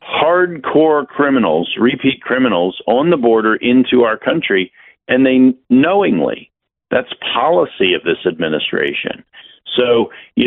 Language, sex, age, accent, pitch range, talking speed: English, male, 50-69, American, 90-120 Hz, 110 wpm